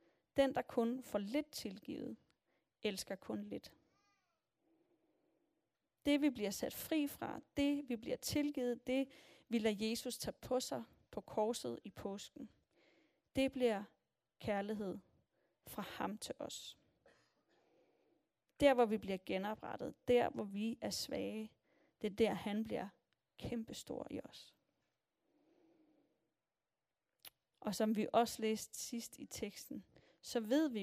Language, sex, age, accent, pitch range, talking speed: Danish, female, 30-49, native, 215-270 Hz, 130 wpm